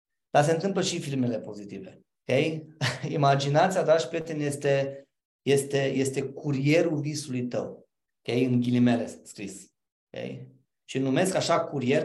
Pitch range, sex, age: 140-195 Hz, male, 20-39